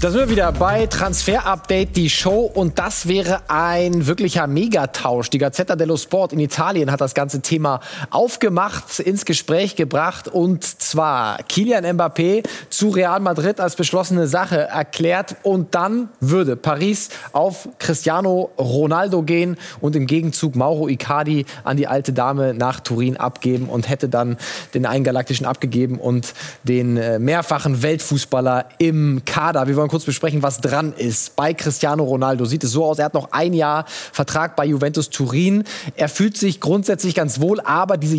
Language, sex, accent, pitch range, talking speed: German, male, German, 135-170 Hz, 160 wpm